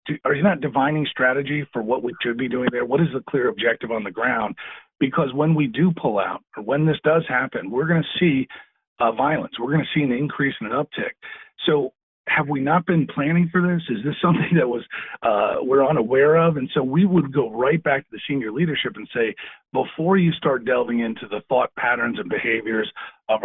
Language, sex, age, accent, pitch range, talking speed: English, male, 50-69, American, 120-160 Hz, 225 wpm